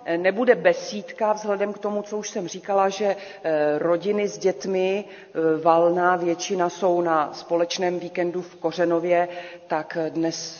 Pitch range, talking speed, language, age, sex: 165-190 Hz, 130 wpm, Czech, 40-59, female